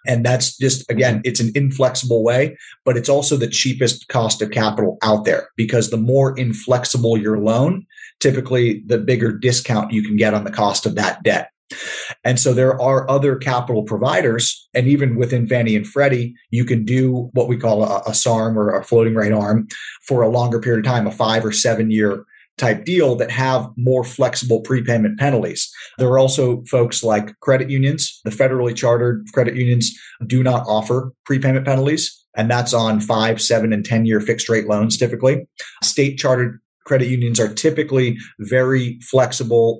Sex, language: male, English